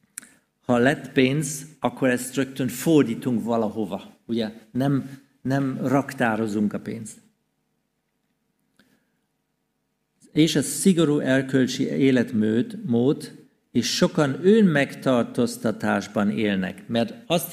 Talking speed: 85 wpm